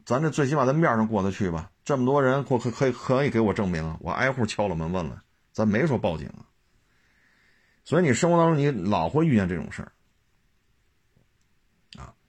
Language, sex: Chinese, male